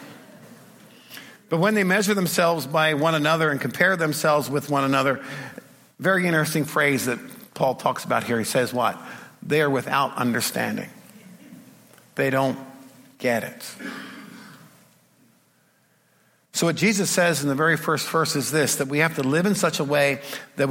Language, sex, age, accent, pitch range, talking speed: English, male, 50-69, American, 150-200 Hz, 155 wpm